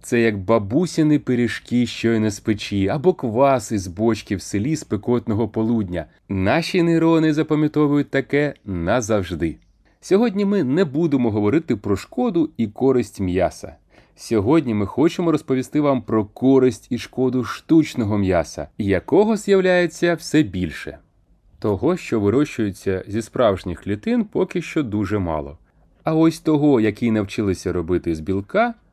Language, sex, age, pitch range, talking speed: Ukrainian, male, 30-49, 100-155 Hz, 135 wpm